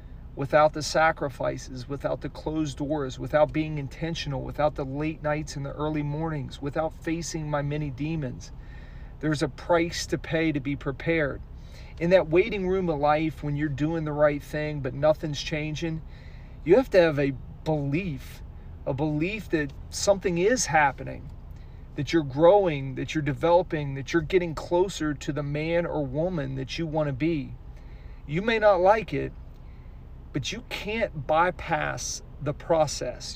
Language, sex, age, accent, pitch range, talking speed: English, male, 40-59, American, 135-170 Hz, 160 wpm